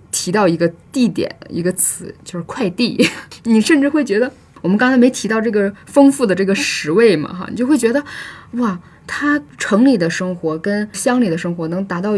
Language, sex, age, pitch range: Chinese, female, 10-29, 180-235 Hz